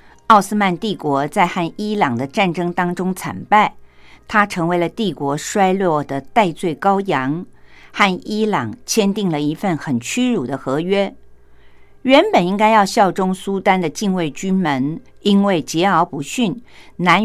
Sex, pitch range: female, 165-225 Hz